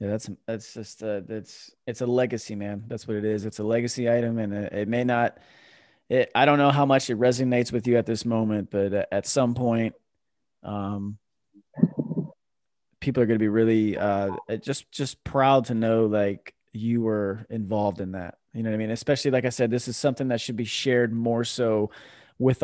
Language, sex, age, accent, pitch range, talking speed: English, male, 20-39, American, 110-140 Hz, 205 wpm